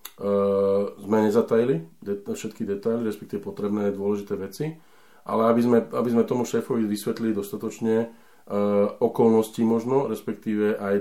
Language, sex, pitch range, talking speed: Slovak, male, 100-110 Hz, 130 wpm